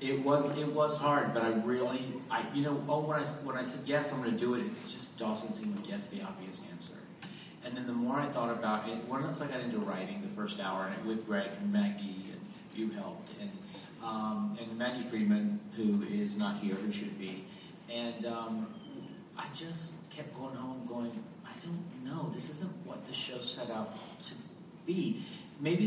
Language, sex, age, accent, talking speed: English, male, 40-59, American, 205 wpm